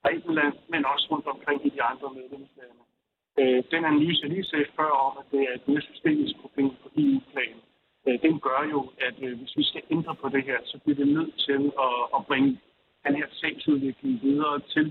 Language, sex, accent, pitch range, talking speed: Danish, male, native, 135-180 Hz, 190 wpm